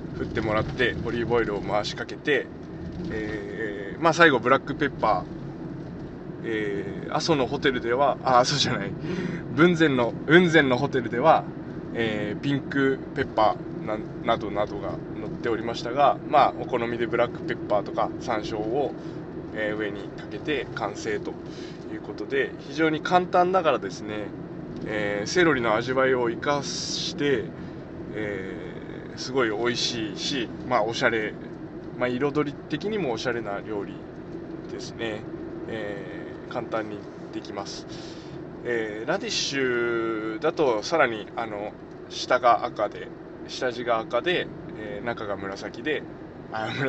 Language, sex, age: Japanese, male, 20-39